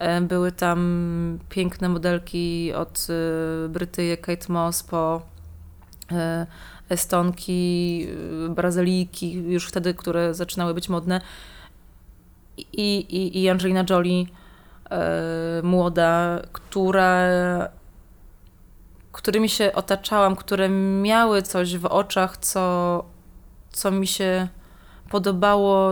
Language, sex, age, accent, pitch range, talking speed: Polish, female, 20-39, native, 175-195 Hz, 85 wpm